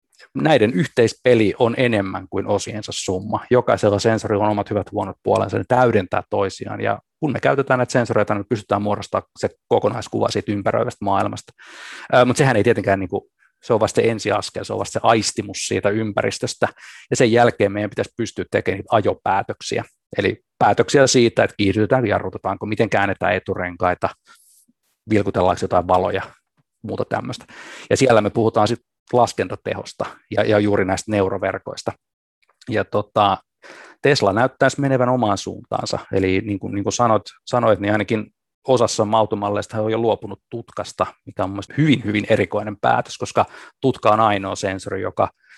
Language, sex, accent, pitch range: Finnish, male, native, 95-110 Hz